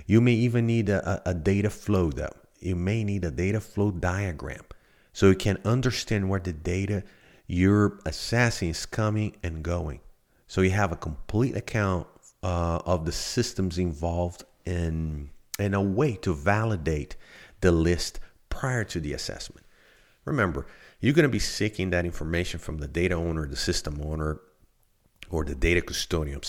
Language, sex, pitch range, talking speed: English, male, 80-100 Hz, 165 wpm